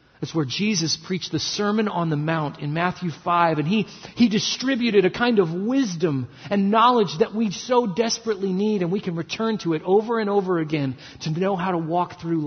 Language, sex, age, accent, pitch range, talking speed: English, male, 40-59, American, 150-220 Hz, 200 wpm